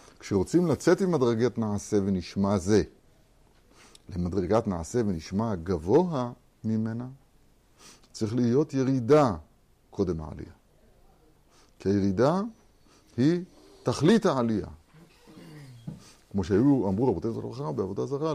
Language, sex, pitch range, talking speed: Hebrew, male, 95-130 Hz, 90 wpm